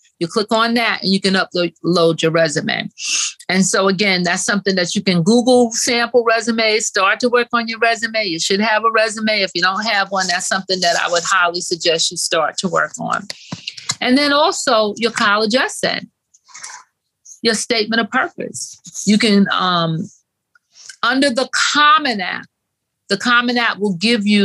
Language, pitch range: English, 180-225 Hz